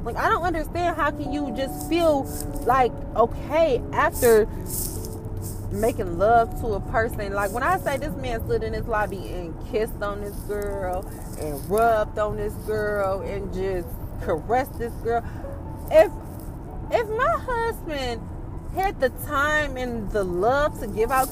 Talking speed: 155 wpm